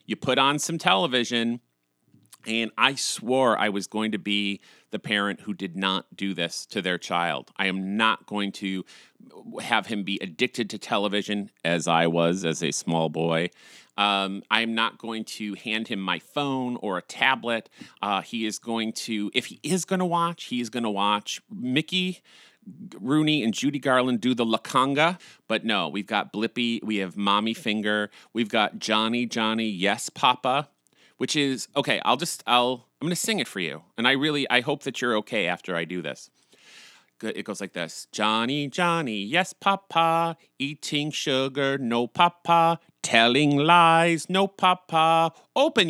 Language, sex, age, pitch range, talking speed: English, male, 40-59, 105-155 Hz, 175 wpm